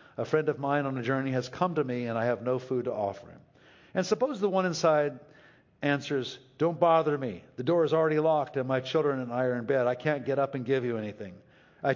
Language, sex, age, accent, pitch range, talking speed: English, male, 60-79, American, 135-175 Hz, 250 wpm